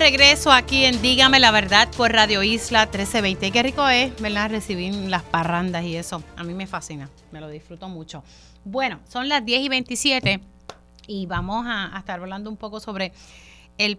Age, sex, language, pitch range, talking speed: 30-49, female, Spanish, 170-215 Hz, 185 wpm